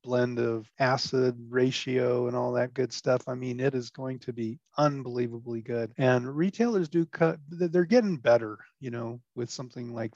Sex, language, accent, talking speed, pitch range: male, English, American, 175 wpm, 120-140 Hz